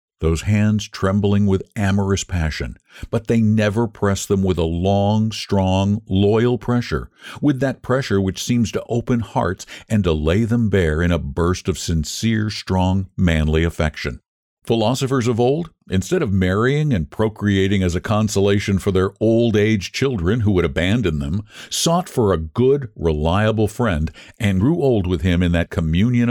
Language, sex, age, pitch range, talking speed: English, male, 60-79, 90-120 Hz, 160 wpm